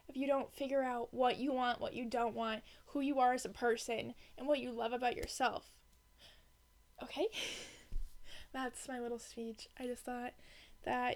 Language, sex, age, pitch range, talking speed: English, female, 10-29, 235-275 Hz, 175 wpm